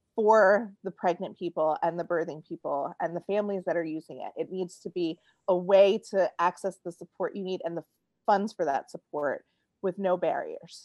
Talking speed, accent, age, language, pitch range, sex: 200 wpm, American, 30-49, English, 185-235 Hz, female